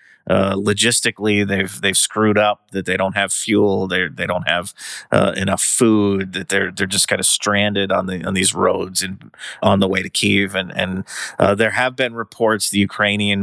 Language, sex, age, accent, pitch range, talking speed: English, male, 30-49, American, 95-110 Hz, 200 wpm